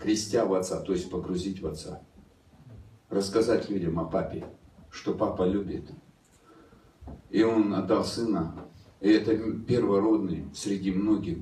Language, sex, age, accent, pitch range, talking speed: Russian, male, 40-59, native, 100-165 Hz, 125 wpm